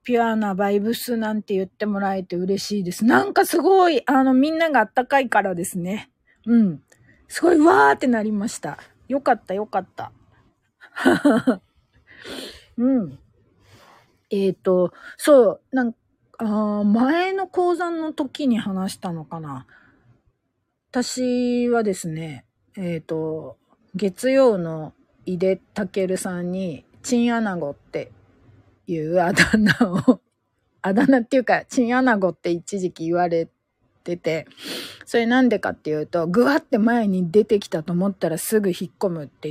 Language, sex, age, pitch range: Japanese, female, 40-59, 175-245 Hz